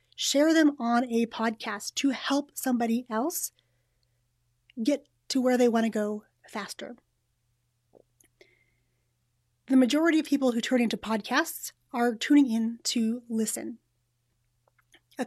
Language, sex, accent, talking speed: English, female, American, 120 wpm